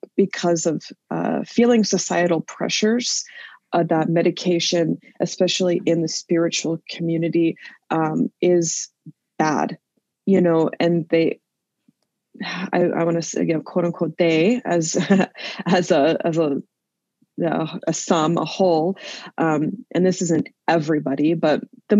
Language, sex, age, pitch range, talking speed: English, female, 20-39, 165-200 Hz, 135 wpm